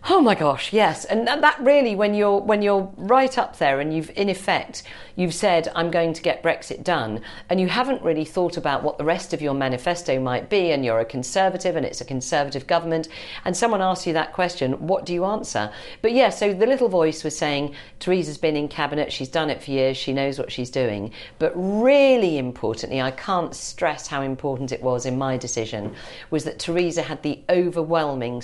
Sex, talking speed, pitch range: female, 210 wpm, 135-185 Hz